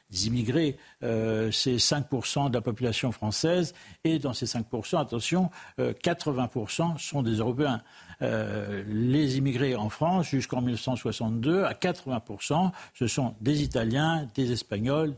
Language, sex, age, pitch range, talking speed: French, male, 60-79, 115-145 Hz, 130 wpm